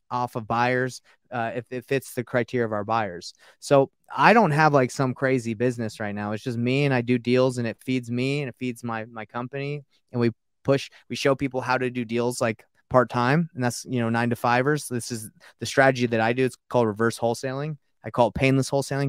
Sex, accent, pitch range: male, American, 120-140 Hz